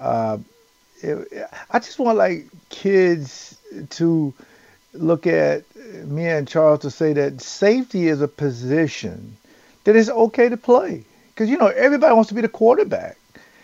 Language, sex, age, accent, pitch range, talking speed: English, male, 50-69, American, 135-175 Hz, 150 wpm